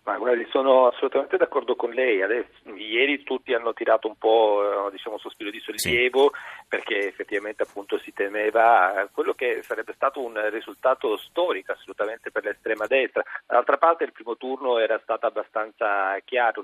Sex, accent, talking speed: male, native, 160 wpm